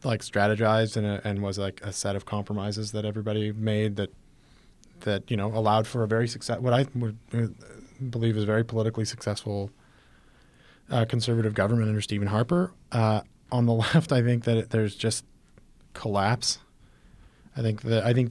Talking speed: 175 wpm